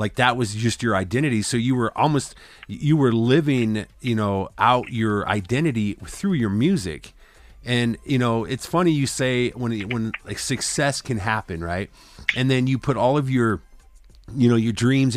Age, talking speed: 40-59, 180 wpm